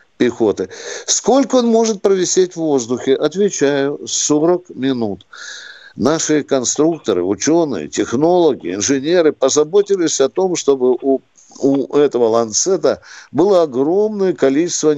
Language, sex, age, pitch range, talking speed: Russian, male, 60-79, 125-185 Hz, 105 wpm